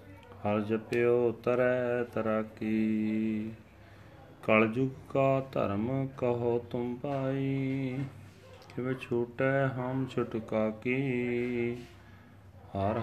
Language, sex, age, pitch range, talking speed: Punjabi, male, 30-49, 110-130 Hz, 75 wpm